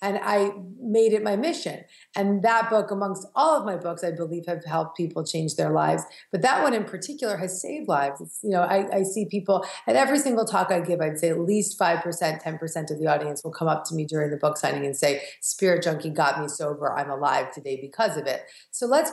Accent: American